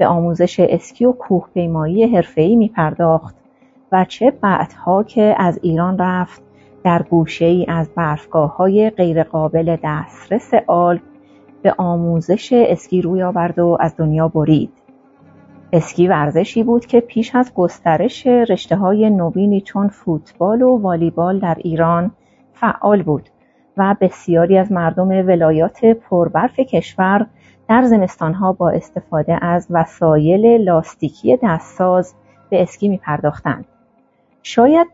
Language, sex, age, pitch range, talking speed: Persian, female, 30-49, 165-210 Hz, 120 wpm